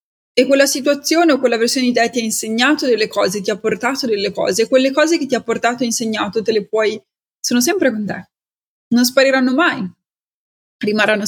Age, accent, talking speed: 20-39, native, 200 wpm